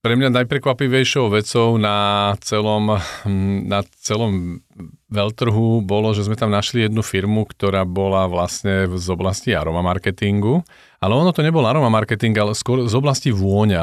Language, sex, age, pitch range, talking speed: Slovak, male, 40-59, 100-125 Hz, 140 wpm